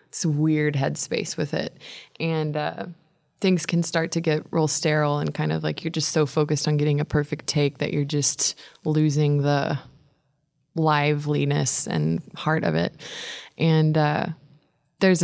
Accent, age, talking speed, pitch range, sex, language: American, 20-39, 160 wpm, 150-180 Hz, female, English